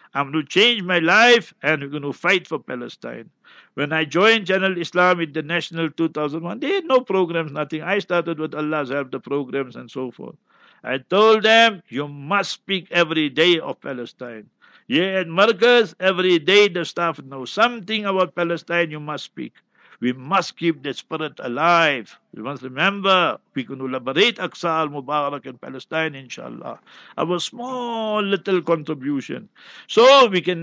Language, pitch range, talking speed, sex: English, 150-195 Hz, 170 wpm, male